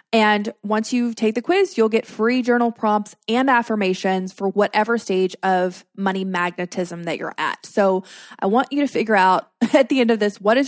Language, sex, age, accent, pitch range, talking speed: English, female, 20-39, American, 200-245 Hz, 200 wpm